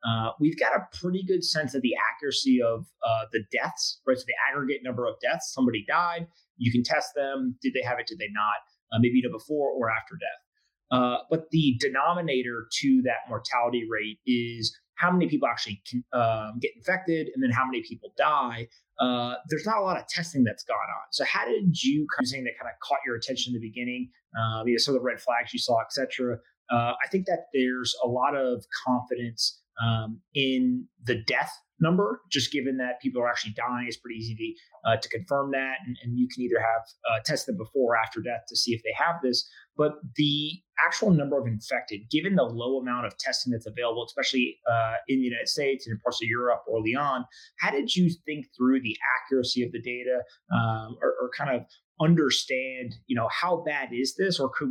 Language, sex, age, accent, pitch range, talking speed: English, male, 30-49, American, 120-150 Hz, 220 wpm